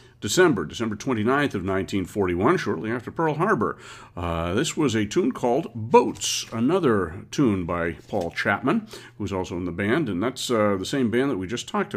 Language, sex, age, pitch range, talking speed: English, male, 50-69, 100-125 Hz, 195 wpm